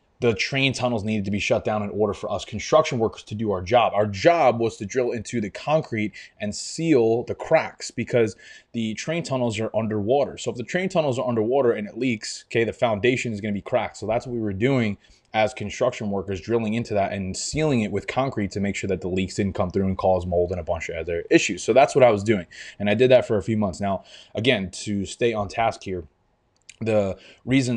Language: English